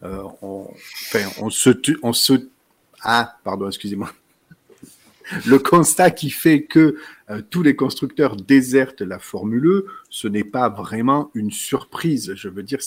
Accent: French